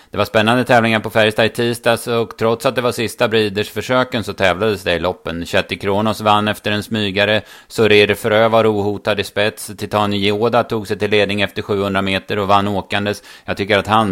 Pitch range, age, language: 95-110 Hz, 30-49, Swedish